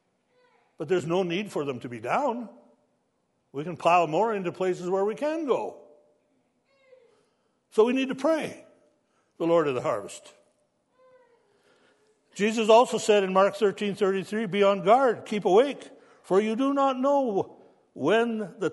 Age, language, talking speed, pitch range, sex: 60-79, English, 155 wpm, 170-225 Hz, male